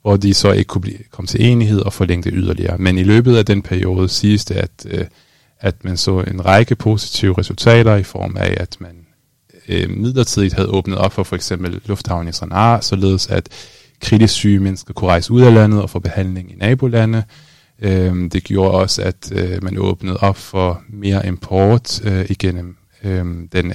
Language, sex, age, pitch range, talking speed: Danish, male, 20-39, 95-110 Hz, 175 wpm